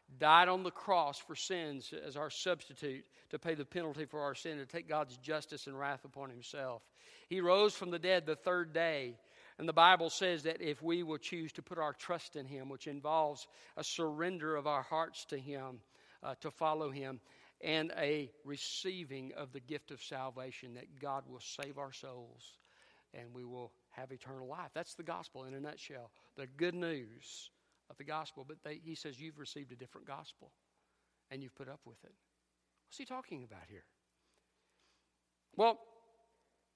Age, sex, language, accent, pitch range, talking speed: 50-69, male, English, American, 135-185 Hz, 185 wpm